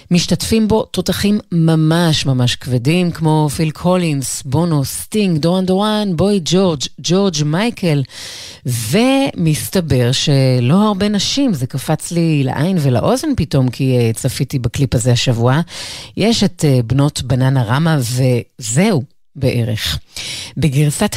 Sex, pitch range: female, 130-180 Hz